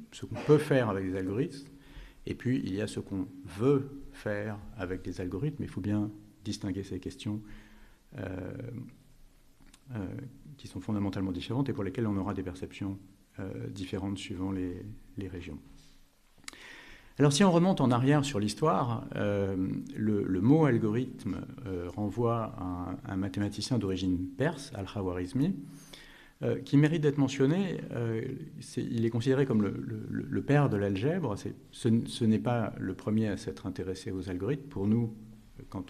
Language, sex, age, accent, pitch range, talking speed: French, male, 50-69, French, 95-135 Hz, 165 wpm